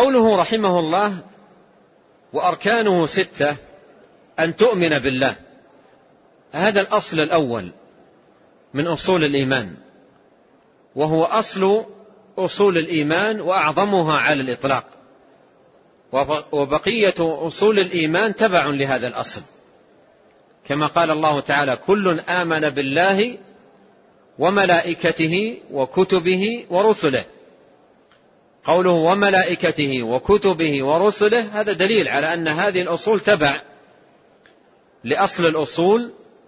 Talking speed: 80 wpm